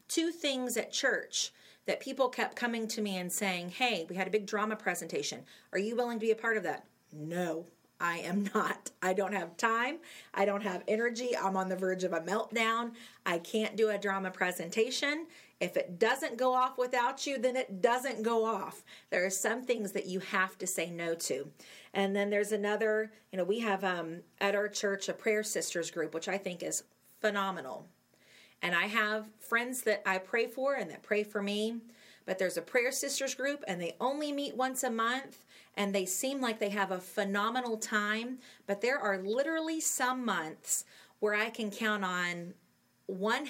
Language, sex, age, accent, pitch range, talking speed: English, female, 40-59, American, 190-235 Hz, 200 wpm